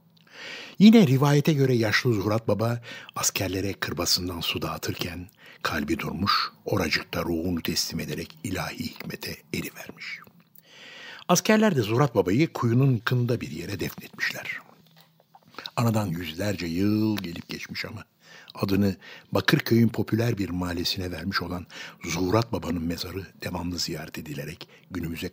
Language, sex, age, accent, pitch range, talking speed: Turkish, male, 60-79, native, 90-120 Hz, 115 wpm